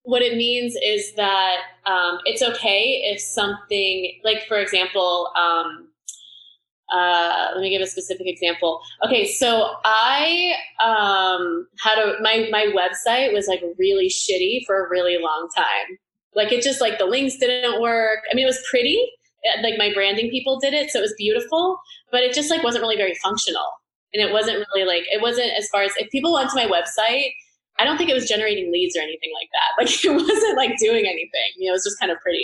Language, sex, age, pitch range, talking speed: English, female, 20-39, 185-260 Hz, 205 wpm